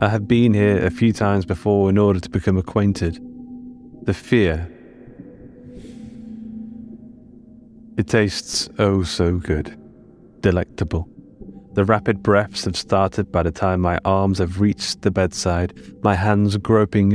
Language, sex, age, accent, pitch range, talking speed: English, male, 30-49, British, 90-115 Hz, 135 wpm